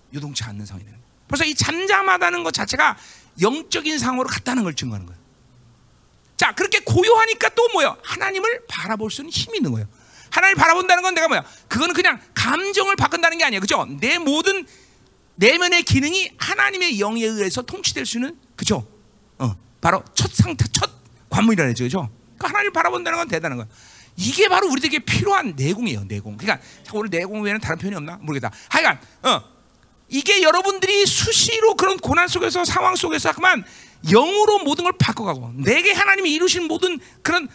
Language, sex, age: Korean, male, 40-59